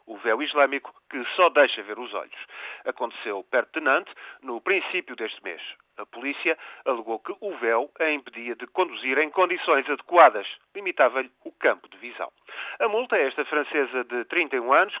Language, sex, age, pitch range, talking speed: Portuguese, male, 40-59, 145-200 Hz, 170 wpm